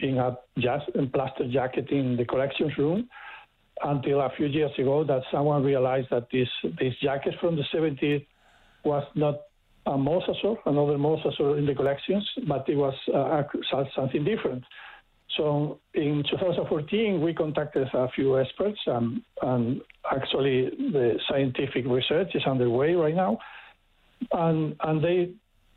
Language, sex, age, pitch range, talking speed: English, male, 60-79, 135-170 Hz, 145 wpm